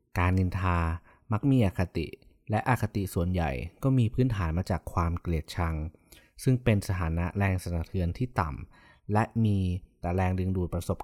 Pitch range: 85-110 Hz